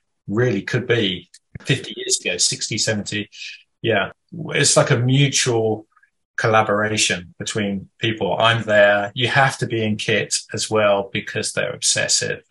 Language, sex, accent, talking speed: English, male, British, 140 wpm